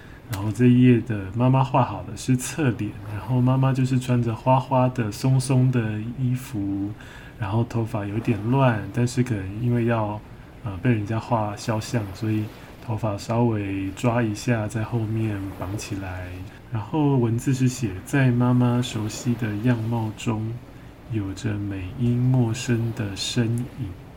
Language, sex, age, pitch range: Chinese, male, 20-39, 105-125 Hz